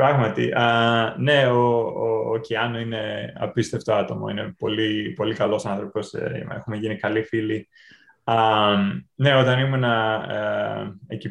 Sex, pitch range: male, 110-155 Hz